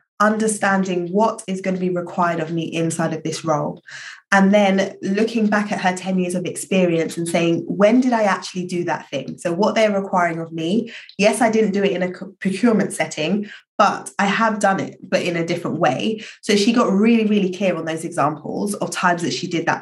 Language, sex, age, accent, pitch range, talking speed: English, female, 20-39, British, 175-215 Hz, 220 wpm